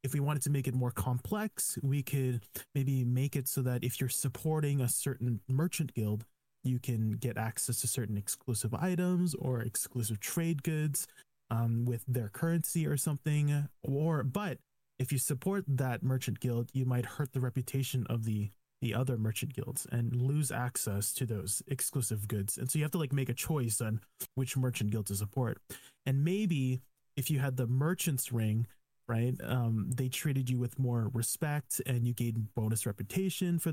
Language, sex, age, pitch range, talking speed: English, male, 20-39, 120-140 Hz, 185 wpm